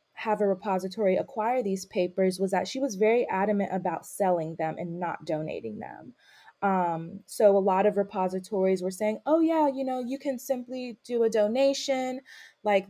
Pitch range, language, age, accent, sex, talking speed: 180-220 Hz, English, 20-39, American, female, 175 wpm